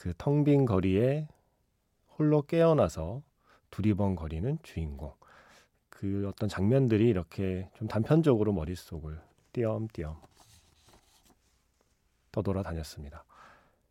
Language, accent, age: Korean, native, 40-59